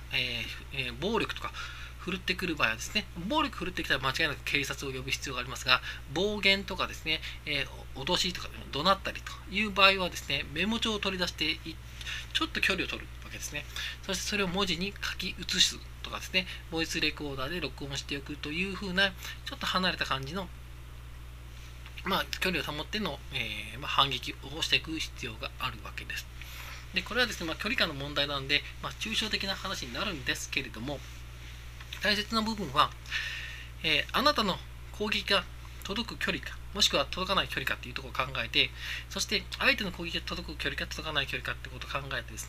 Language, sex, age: Japanese, male, 20-39